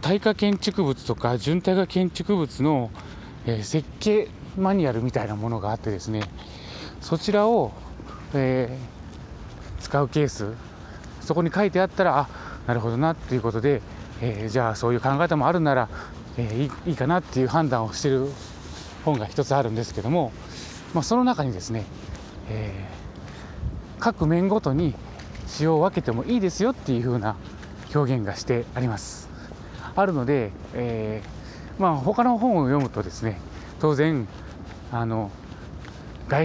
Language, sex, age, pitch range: Japanese, male, 20-39, 105-165 Hz